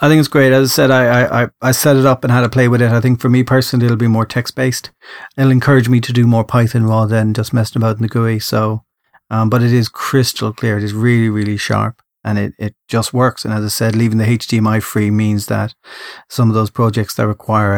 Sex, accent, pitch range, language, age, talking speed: male, Irish, 110-120 Hz, English, 40-59, 260 wpm